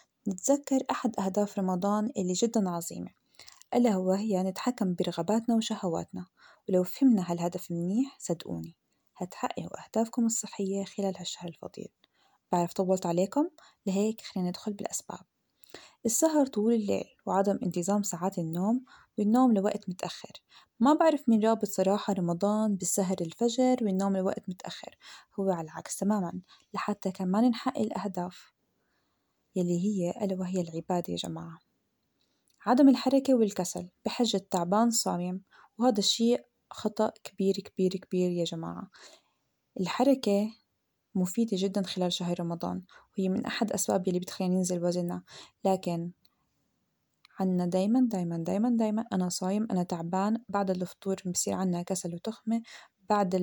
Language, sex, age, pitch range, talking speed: Arabic, female, 20-39, 180-225 Hz, 125 wpm